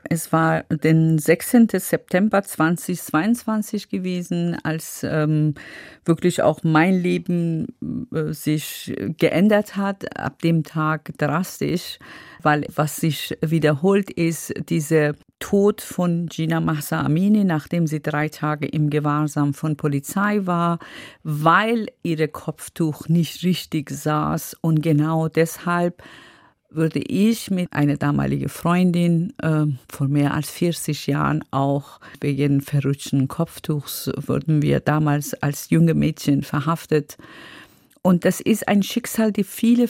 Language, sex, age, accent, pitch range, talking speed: German, female, 50-69, German, 150-175 Hz, 120 wpm